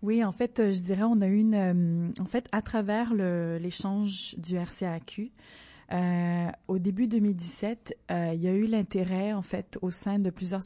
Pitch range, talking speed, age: 175-195 Hz, 185 wpm, 30-49